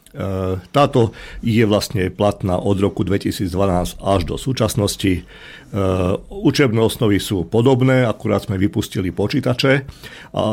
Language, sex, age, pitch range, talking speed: Slovak, male, 50-69, 100-115 Hz, 110 wpm